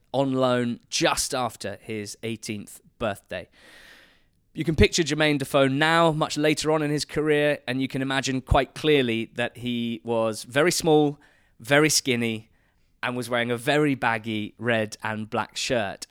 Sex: male